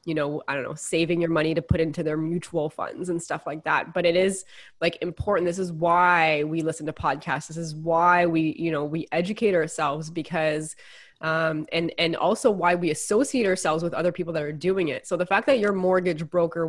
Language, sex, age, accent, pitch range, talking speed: English, female, 20-39, American, 160-185 Hz, 225 wpm